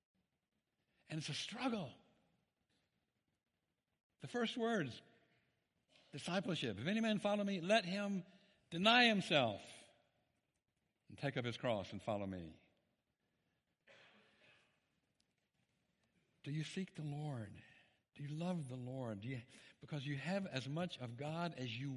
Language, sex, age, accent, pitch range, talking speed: English, male, 60-79, American, 130-190 Hz, 120 wpm